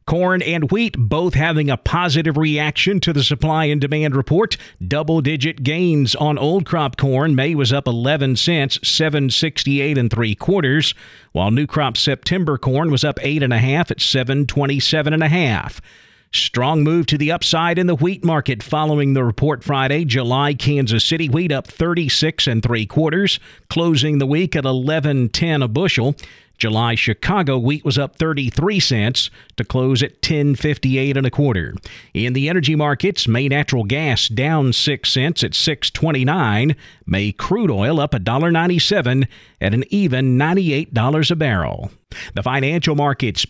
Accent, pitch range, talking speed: American, 130-155 Hz, 160 wpm